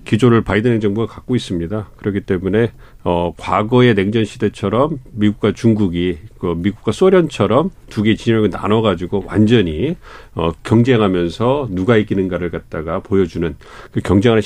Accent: native